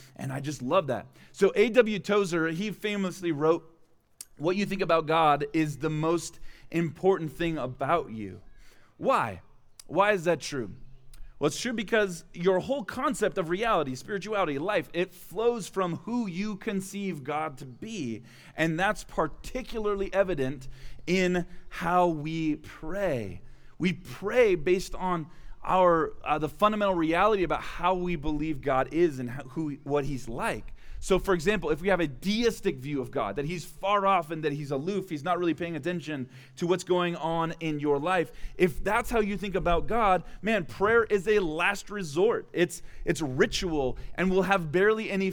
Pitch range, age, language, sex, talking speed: 150-195 Hz, 30-49, English, male, 170 wpm